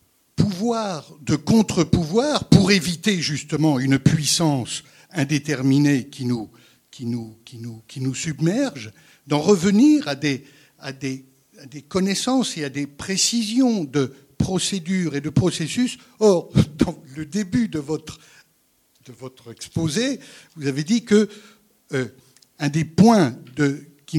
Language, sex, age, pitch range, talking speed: French, male, 60-79, 140-200 Hz, 135 wpm